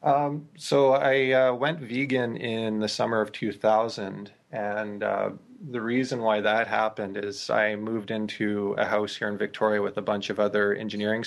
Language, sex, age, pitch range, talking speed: English, male, 20-39, 105-115 Hz, 175 wpm